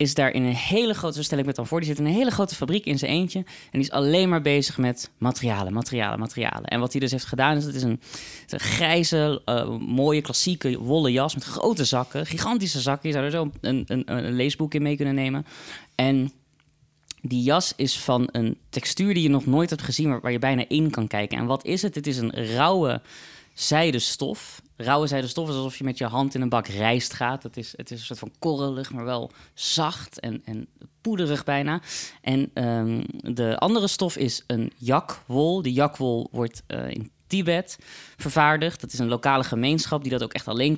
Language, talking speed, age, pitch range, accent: Dutch, 215 wpm, 20-39, 120-150 Hz, Dutch